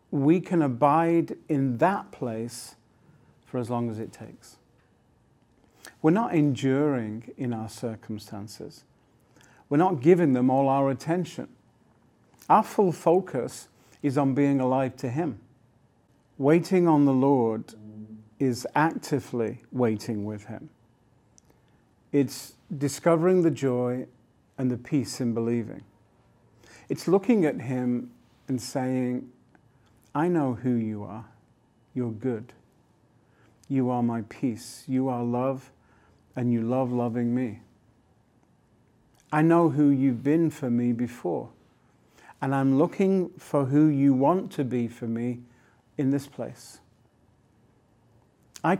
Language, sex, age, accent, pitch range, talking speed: English, male, 50-69, British, 115-145 Hz, 125 wpm